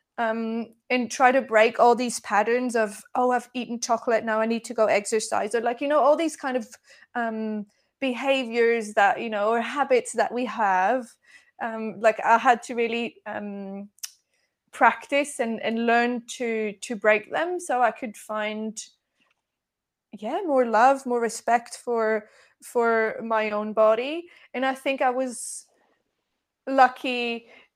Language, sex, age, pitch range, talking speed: English, female, 20-39, 220-255 Hz, 155 wpm